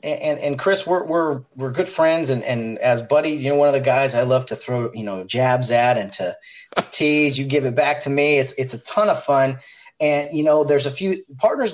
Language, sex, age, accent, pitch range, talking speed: English, male, 30-49, American, 130-180 Hz, 250 wpm